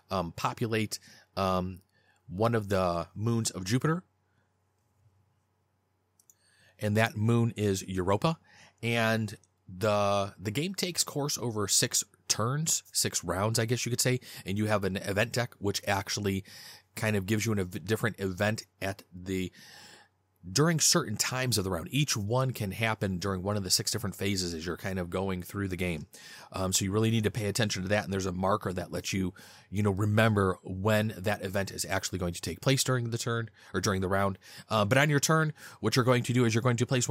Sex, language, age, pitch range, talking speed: male, English, 30-49, 95-115 Hz, 200 wpm